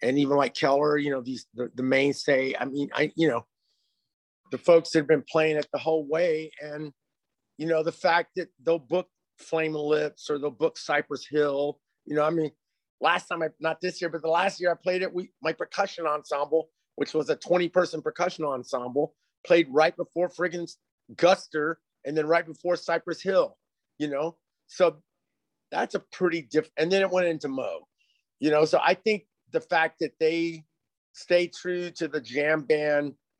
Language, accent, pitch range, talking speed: English, American, 145-170 Hz, 190 wpm